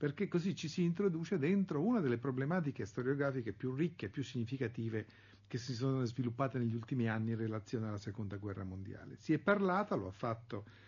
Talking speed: 190 wpm